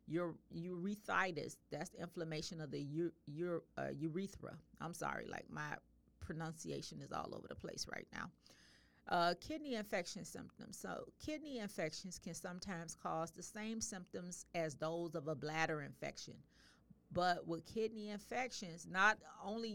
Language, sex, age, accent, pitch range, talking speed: English, female, 40-59, American, 155-205 Hz, 135 wpm